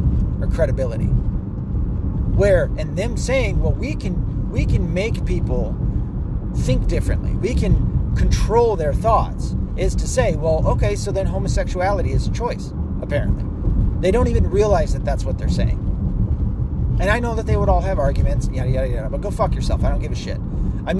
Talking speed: 180 wpm